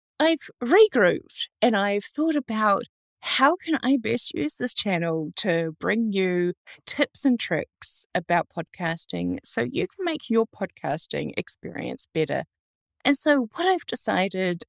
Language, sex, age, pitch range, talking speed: English, female, 20-39, 165-245 Hz, 140 wpm